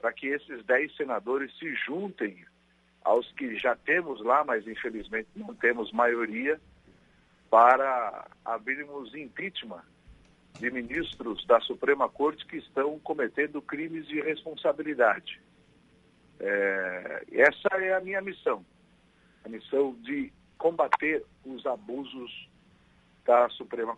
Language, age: Portuguese, 60-79